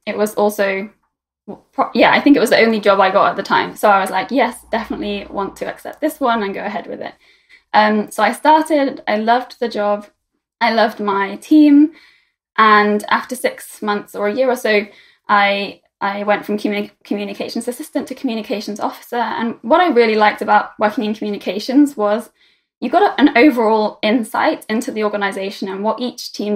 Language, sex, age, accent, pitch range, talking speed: English, female, 10-29, British, 205-265 Hz, 190 wpm